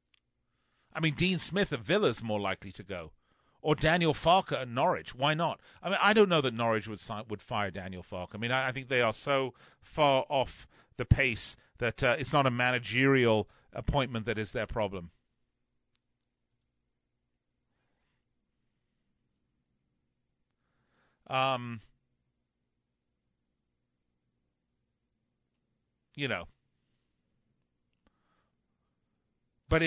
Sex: male